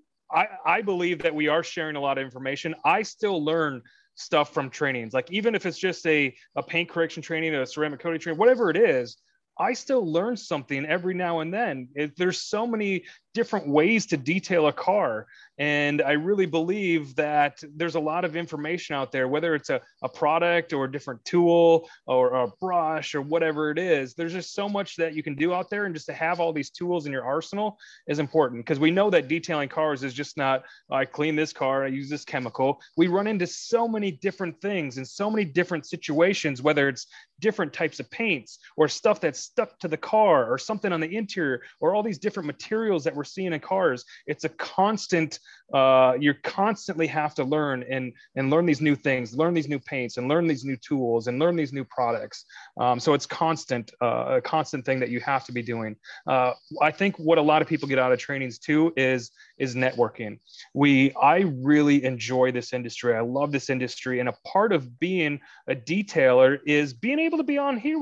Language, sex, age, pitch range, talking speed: English, male, 30-49, 135-180 Hz, 215 wpm